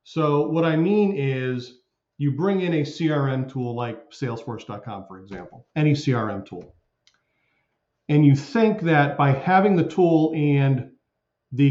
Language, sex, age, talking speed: English, male, 40-59, 145 wpm